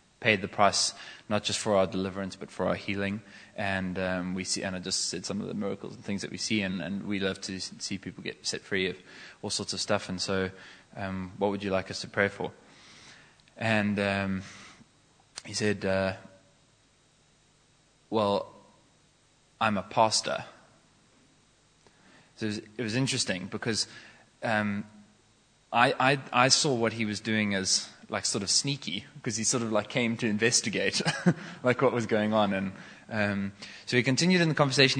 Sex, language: male, English